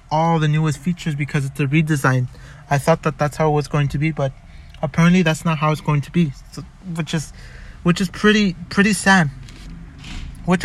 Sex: male